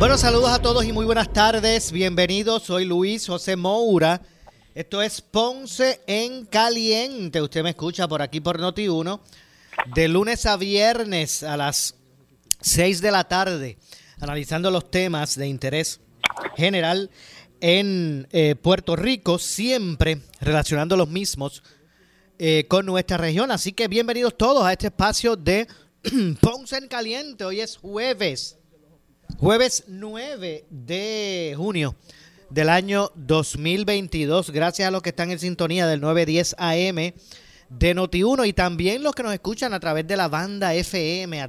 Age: 30-49